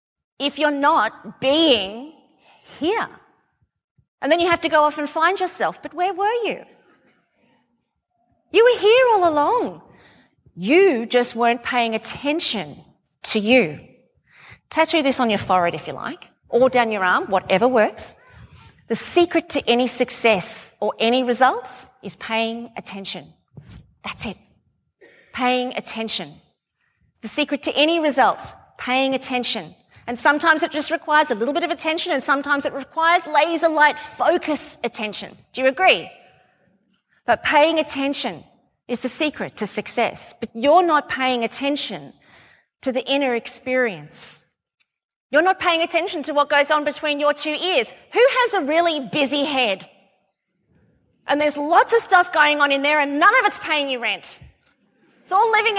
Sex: female